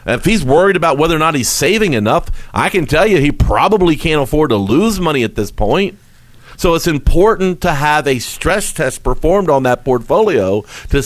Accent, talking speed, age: American, 200 wpm, 50-69